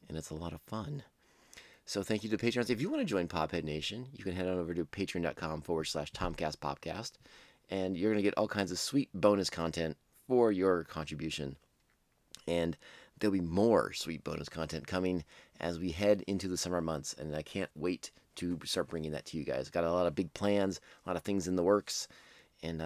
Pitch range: 80-100 Hz